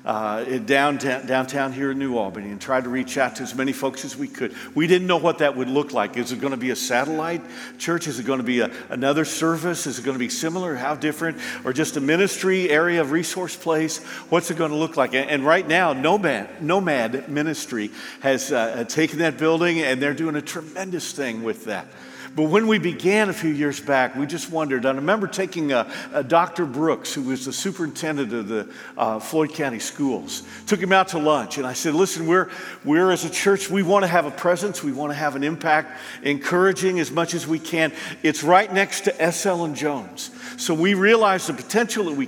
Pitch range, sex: 140-190 Hz, male